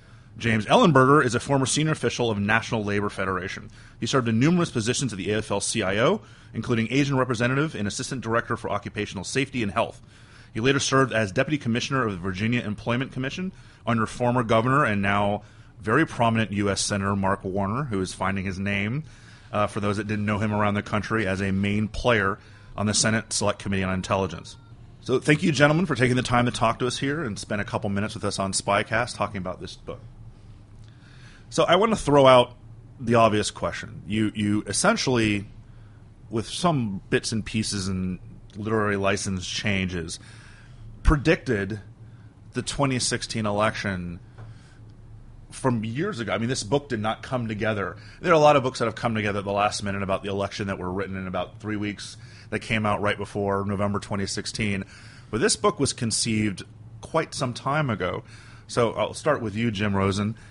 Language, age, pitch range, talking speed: English, 30-49, 105-120 Hz, 185 wpm